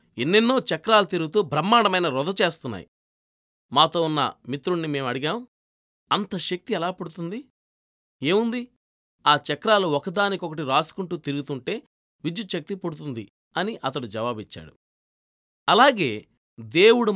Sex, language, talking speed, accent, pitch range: male, Telugu, 100 wpm, native, 145-205 Hz